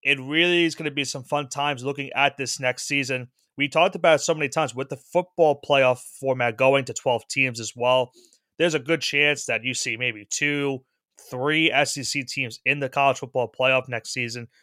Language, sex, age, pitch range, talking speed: English, male, 30-49, 135-165 Hz, 210 wpm